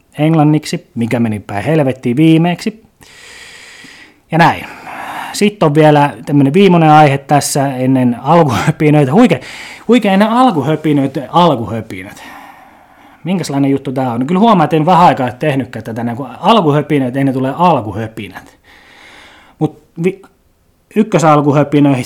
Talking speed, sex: 105 wpm, male